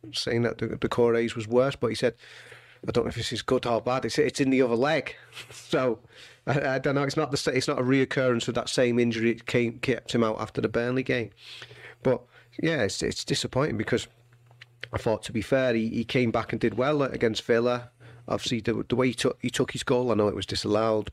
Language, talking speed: English, 240 wpm